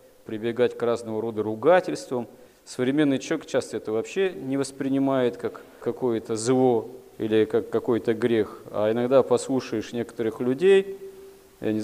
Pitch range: 110-135 Hz